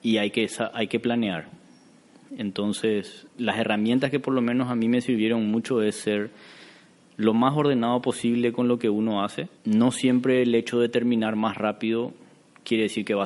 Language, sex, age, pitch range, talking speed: Spanish, male, 20-39, 100-120 Hz, 185 wpm